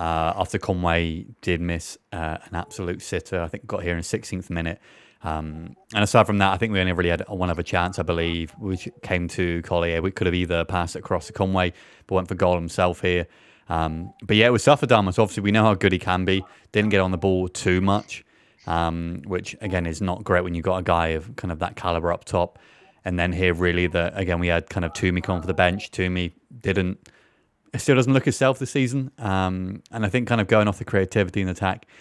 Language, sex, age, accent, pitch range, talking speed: English, male, 20-39, British, 85-100 Hz, 235 wpm